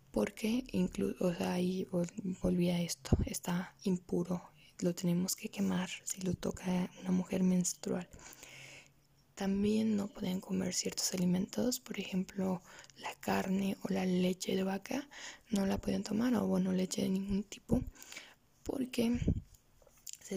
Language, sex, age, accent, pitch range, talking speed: Spanish, female, 20-39, Mexican, 185-230 Hz, 135 wpm